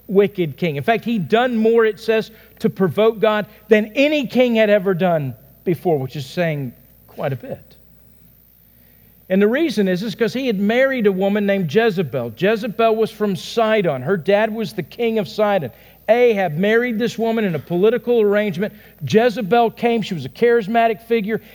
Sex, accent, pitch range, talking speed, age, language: male, American, 135-215 Hz, 180 wpm, 50-69, English